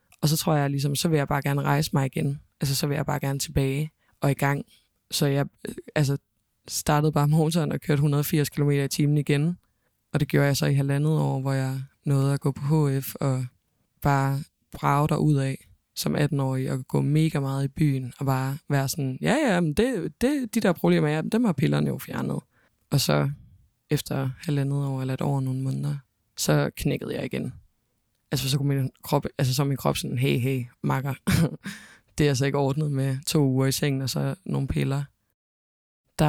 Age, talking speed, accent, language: 20-39, 205 wpm, native, Danish